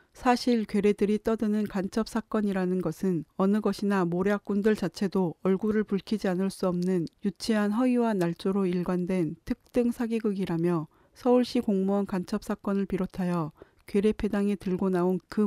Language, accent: Korean, native